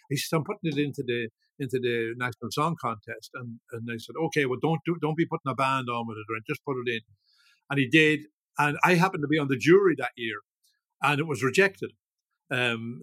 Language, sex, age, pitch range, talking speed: English, male, 50-69, 125-165 Hz, 235 wpm